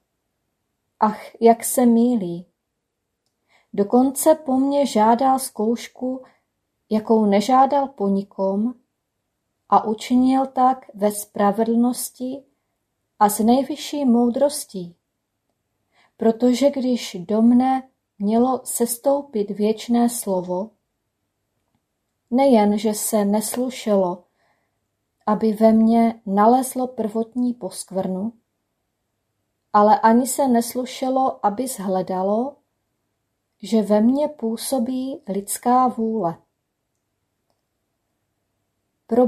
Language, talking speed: Czech, 80 wpm